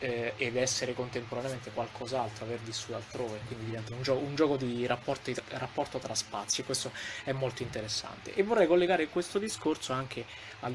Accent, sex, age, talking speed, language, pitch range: native, male, 20-39, 165 wpm, Italian, 110-135 Hz